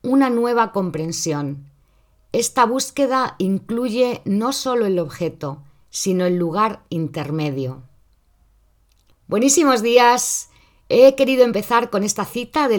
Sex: female